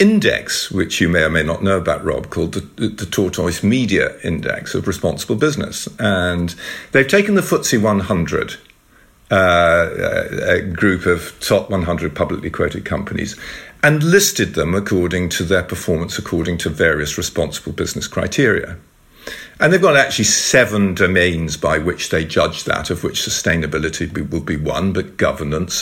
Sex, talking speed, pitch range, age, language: male, 155 wpm, 90-125 Hz, 50-69, English